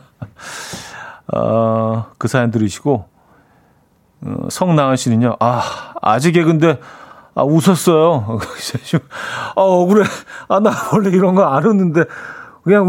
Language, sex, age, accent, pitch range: Korean, male, 40-59, native, 115-170 Hz